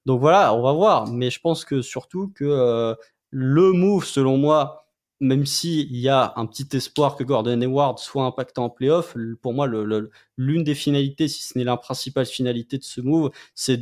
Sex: male